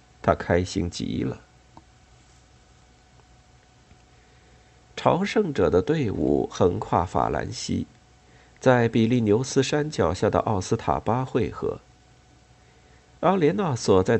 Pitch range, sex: 75-120 Hz, male